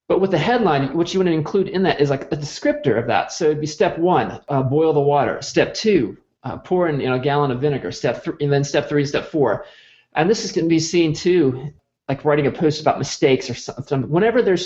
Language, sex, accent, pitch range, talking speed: English, male, American, 130-155 Hz, 260 wpm